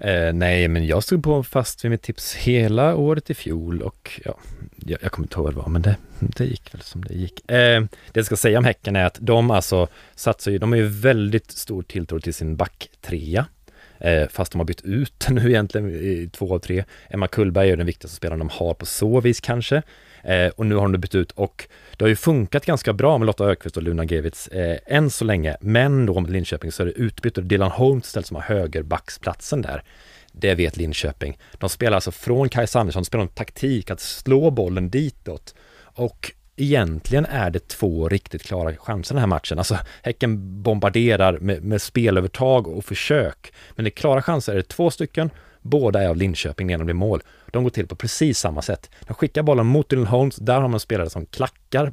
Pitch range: 90-120 Hz